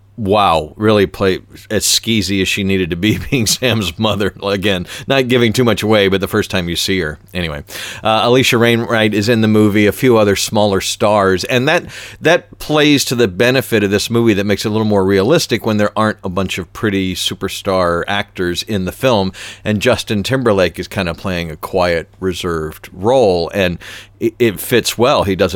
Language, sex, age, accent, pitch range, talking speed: English, male, 40-59, American, 95-115 Hz, 200 wpm